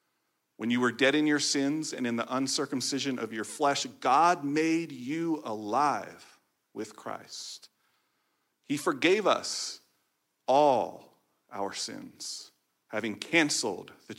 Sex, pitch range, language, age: male, 120-155 Hz, English, 40-59